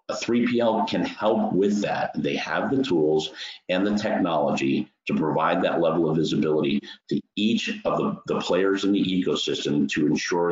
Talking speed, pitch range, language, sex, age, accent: 170 wpm, 80-110 Hz, English, male, 50-69, American